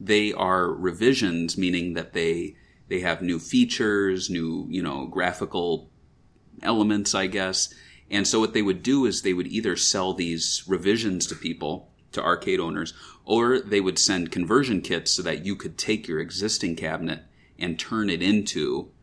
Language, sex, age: English, male, 30-49